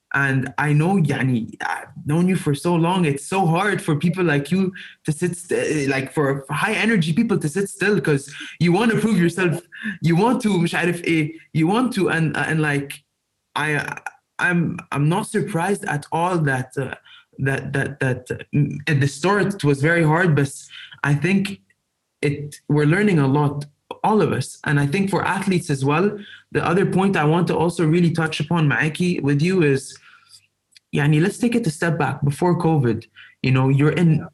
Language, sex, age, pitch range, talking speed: English, male, 20-39, 145-180 Hz, 190 wpm